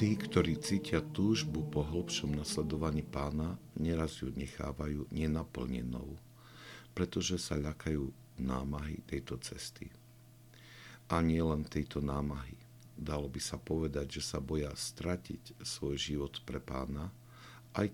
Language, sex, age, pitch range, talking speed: Slovak, male, 60-79, 70-95 Hz, 115 wpm